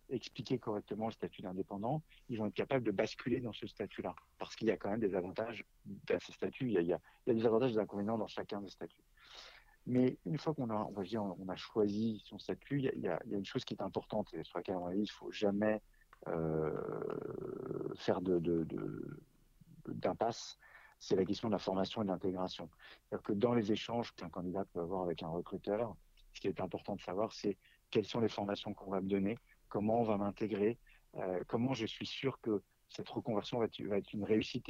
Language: French